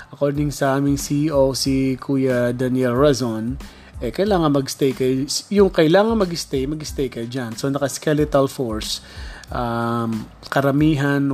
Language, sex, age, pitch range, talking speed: Filipino, male, 20-39, 130-155 Hz, 115 wpm